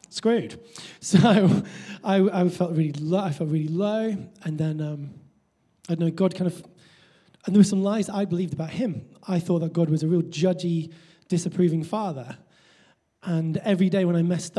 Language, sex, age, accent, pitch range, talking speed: English, male, 20-39, British, 155-185 Hz, 170 wpm